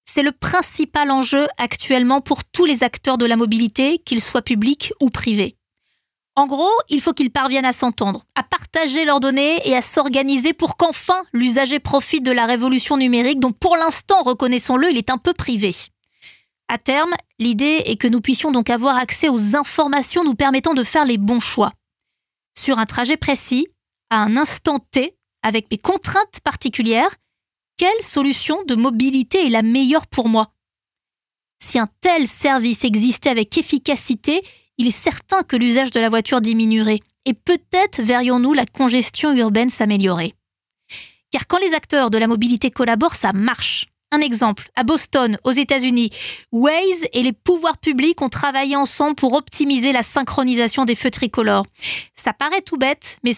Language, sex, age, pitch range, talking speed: French, female, 20-39, 240-295 Hz, 165 wpm